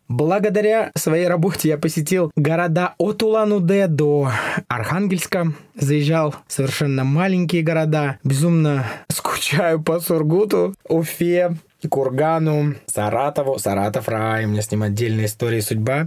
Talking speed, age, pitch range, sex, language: 120 wpm, 20-39, 130-175 Hz, male, Russian